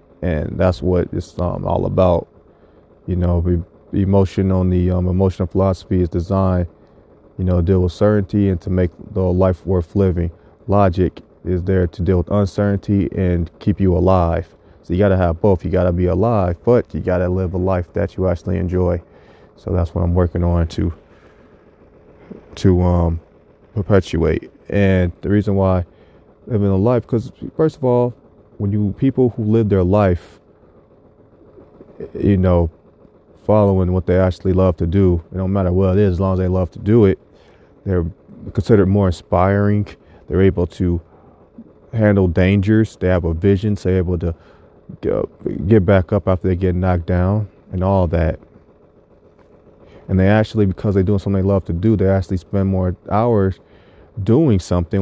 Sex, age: male, 30-49